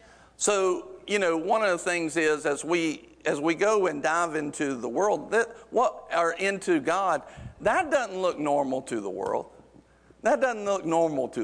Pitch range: 150-195 Hz